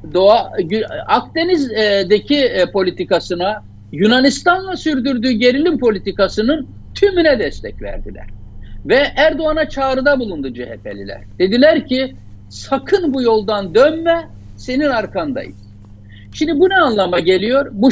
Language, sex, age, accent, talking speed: Turkish, male, 60-79, native, 95 wpm